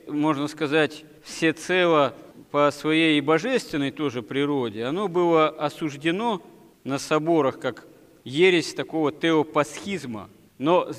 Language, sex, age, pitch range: Russian, male, 40-59, 150-175 Hz